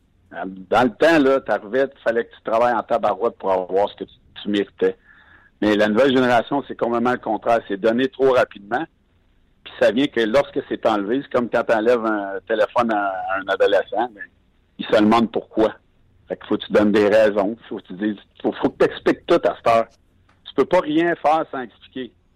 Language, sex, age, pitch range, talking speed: French, male, 60-79, 95-120 Hz, 205 wpm